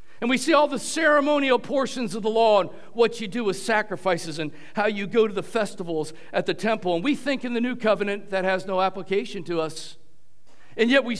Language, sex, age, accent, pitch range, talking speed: English, male, 50-69, American, 190-280 Hz, 225 wpm